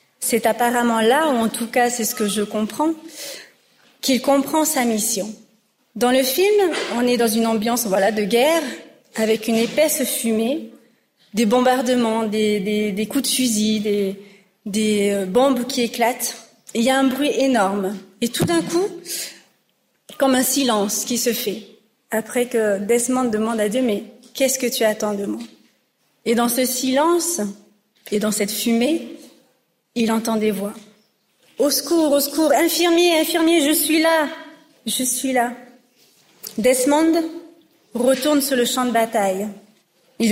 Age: 40-59